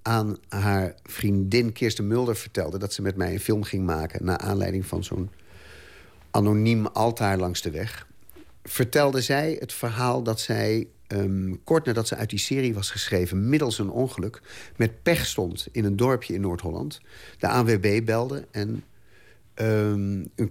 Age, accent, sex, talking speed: 50-69, Dutch, male, 155 wpm